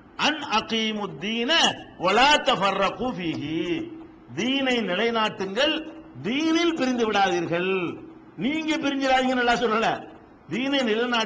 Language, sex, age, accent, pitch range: Tamil, male, 50-69, native, 200-255 Hz